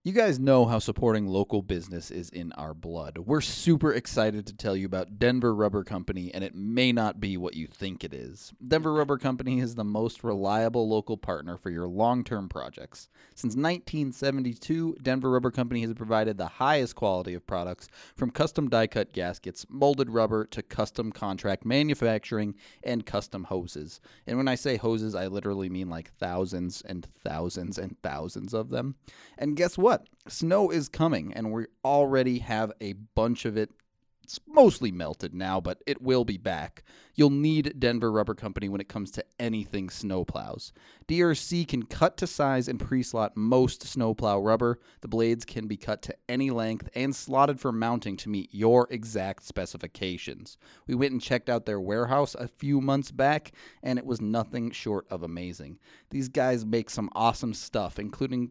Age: 30-49